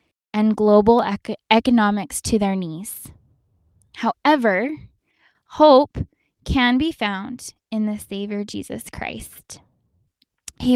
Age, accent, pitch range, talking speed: 10-29, American, 210-255 Hz, 95 wpm